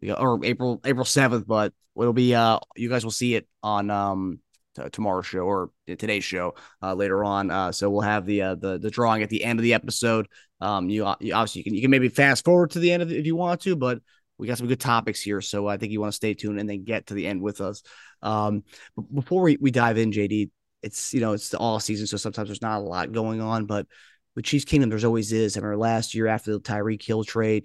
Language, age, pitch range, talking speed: English, 20-39, 105-120 Hz, 265 wpm